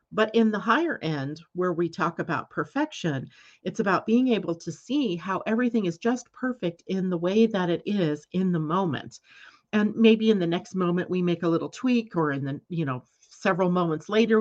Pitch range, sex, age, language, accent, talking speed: 160-200 Hz, female, 40-59, English, American, 205 wpm